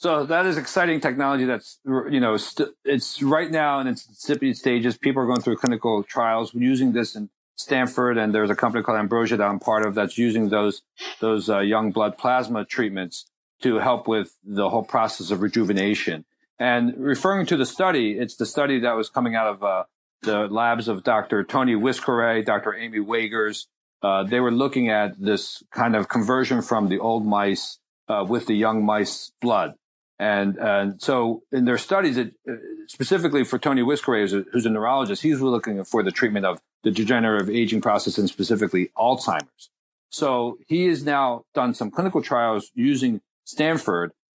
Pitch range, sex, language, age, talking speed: 110-130 Hz, male, English, 50-69, 180 wpm